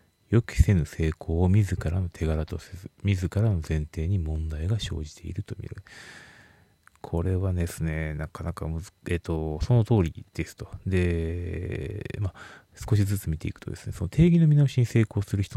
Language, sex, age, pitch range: Japanese, male, 30-49, 85-110 Hz